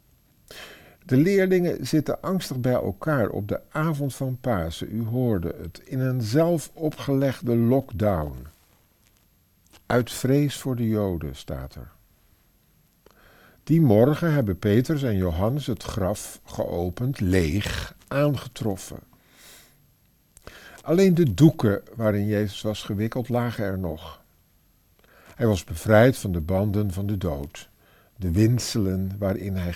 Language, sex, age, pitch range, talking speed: Dutch, male, 50-69, 90-135 Hz, 120 wpm